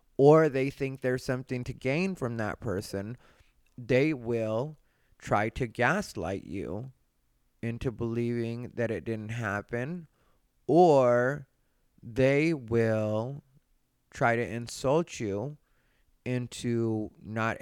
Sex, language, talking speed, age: male, English, 105 wpm, 30-49